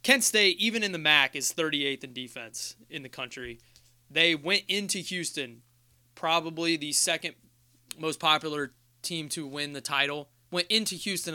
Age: 20-39